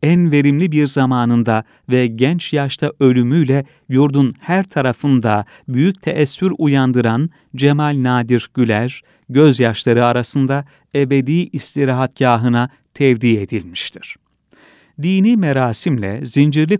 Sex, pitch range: male, 125-150 Hz